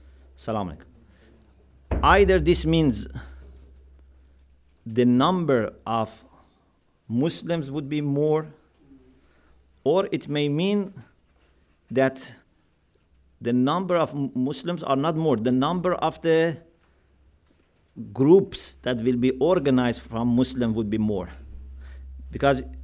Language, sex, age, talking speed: English, male, 50-69, 100 wpm